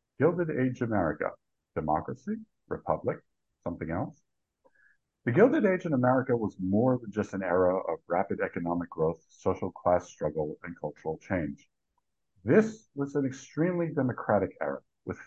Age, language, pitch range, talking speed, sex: 50-69, English, 105-150 Hz, 140 wpm, male